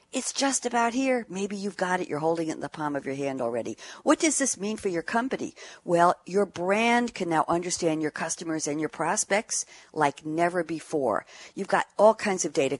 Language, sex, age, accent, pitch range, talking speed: English, female, 60-79, American, 145-190 Hz, 210 wpm